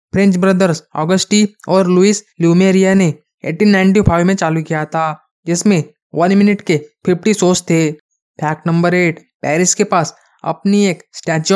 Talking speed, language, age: 145 wpm, Hindi, 20-39